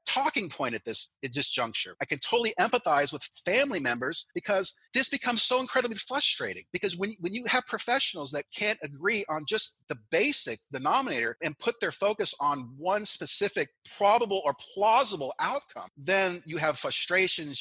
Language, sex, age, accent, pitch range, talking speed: English, male, 40-59, American, 150-205 Hz, 165 wpm